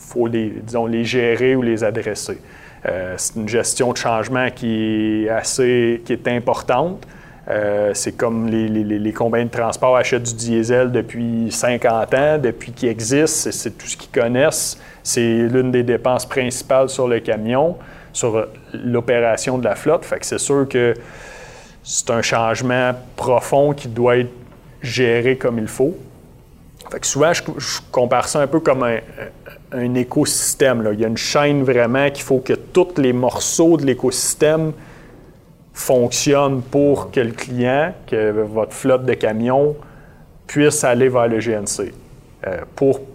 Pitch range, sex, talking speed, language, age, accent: 115-130 Hz, male, 165 wpm, French, 30-49, Canadian